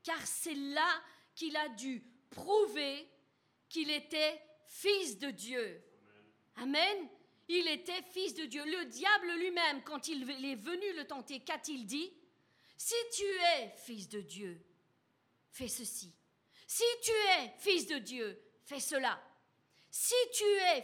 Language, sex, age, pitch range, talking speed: French, female, 40-59, 235-345 Hz, 140 wpm